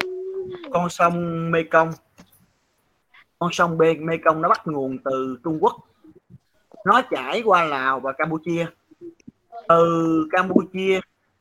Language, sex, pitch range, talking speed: Vietnamese, male, 145-190 Hz, 120 wpm